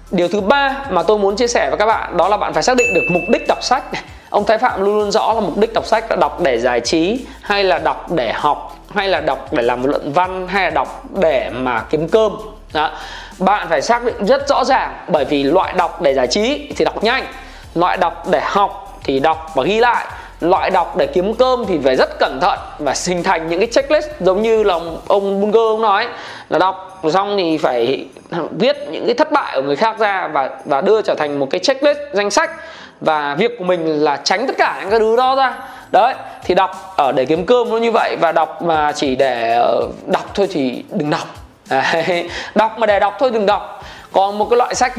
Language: Vietnamese